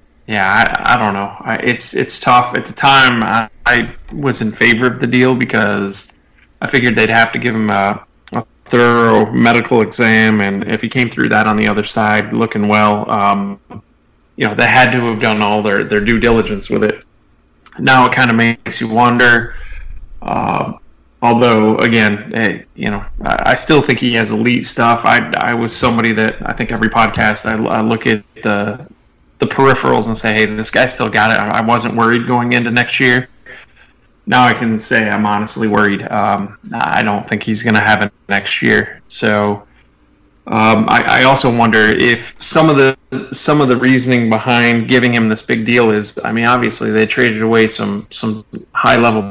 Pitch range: 105-120 Hz